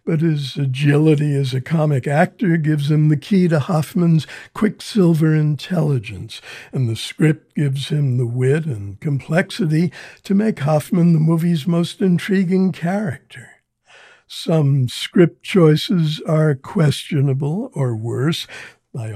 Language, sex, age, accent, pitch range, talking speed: English, male, 60-79, American, 135-170 Hz, 125 wpm